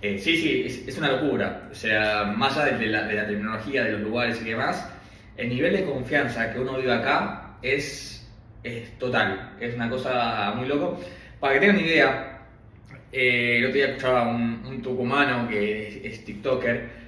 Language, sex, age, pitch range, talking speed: Spanish, male, 20-39, 110-140 Hz, 190 wpm